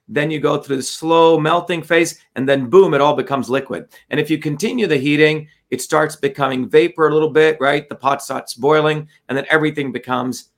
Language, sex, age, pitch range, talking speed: English, male, 40-59, 145-175 Hz, 210 wpm